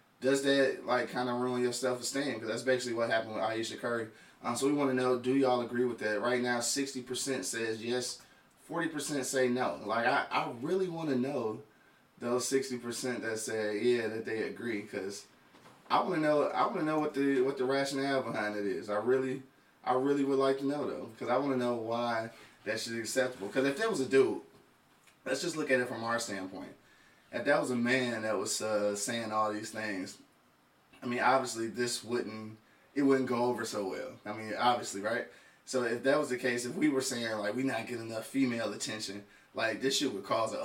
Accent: American